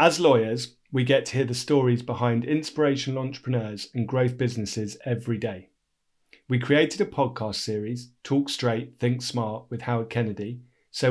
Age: 40-59